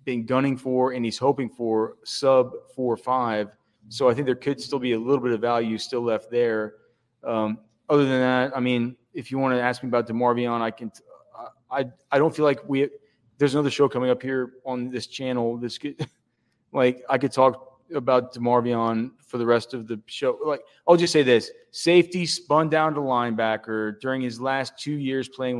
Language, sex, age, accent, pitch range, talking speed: English, male, 30-49, American, 115-135 Hz, 205 wpm